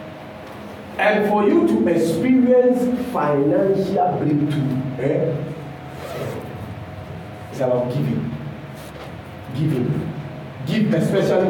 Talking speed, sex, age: 75 wpm, male, 40-59